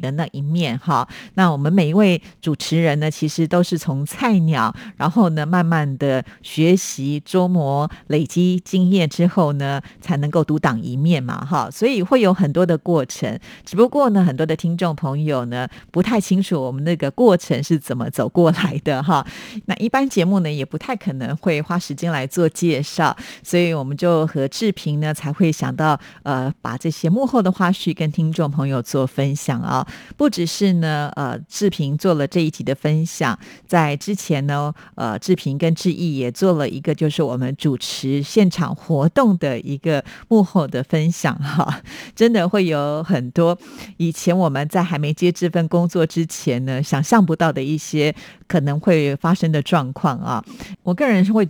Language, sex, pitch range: Chinese, female, 145-180 Hz